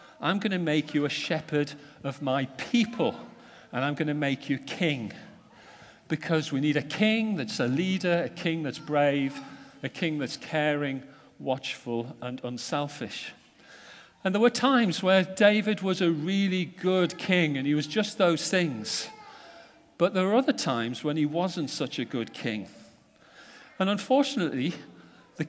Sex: male